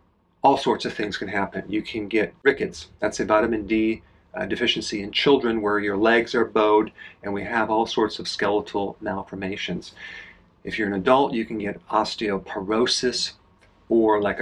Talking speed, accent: 170 wpm, American